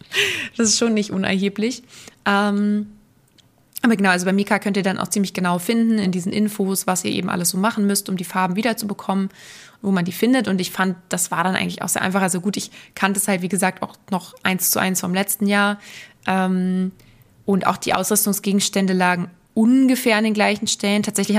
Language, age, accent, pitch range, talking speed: German, 20-39, German, 185-215 Hz, 210 wpm